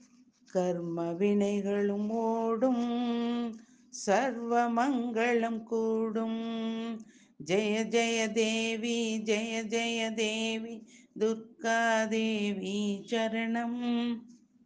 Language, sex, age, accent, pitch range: Tamil, female, 50-69, native, 205-235 Hz